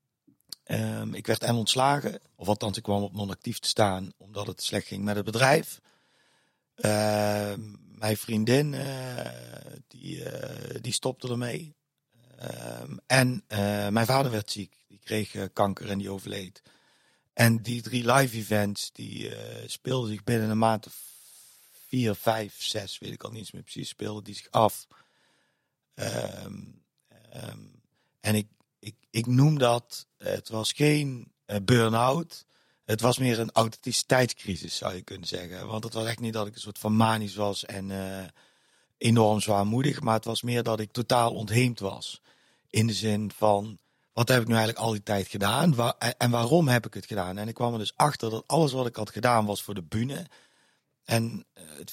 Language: Dutch